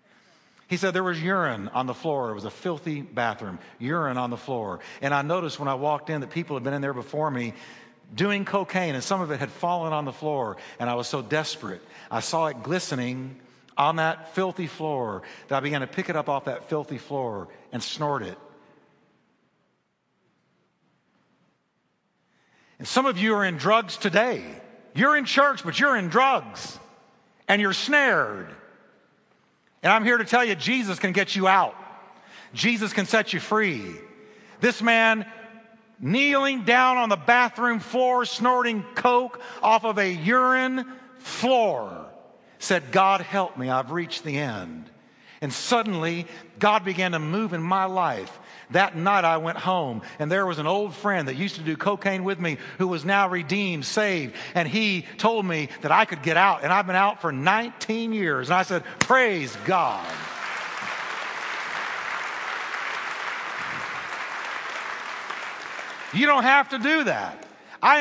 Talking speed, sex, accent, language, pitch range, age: 165 wpm, male, American, English, 160-225 Hz, 50-69